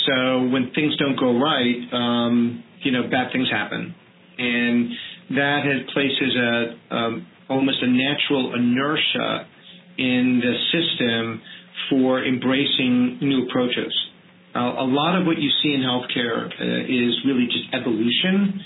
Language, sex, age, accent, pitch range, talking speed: English, male, 40-59, American, 125-155 Hz, 140 wpm